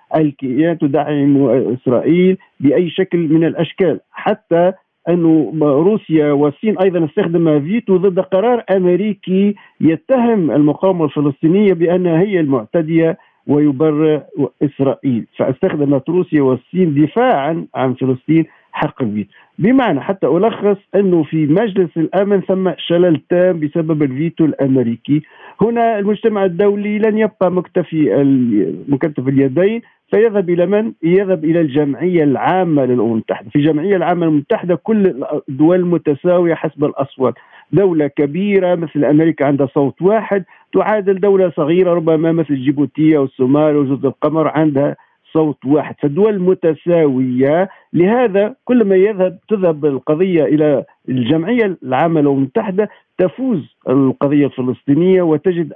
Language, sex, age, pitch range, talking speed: Arabic, male, 50-69, 145-190 Hz, 115 wpm